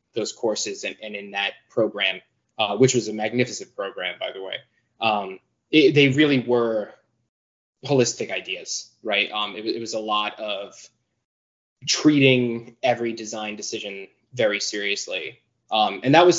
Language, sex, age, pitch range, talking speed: English, male, 20-39, 105-125 Hz, 145 wpm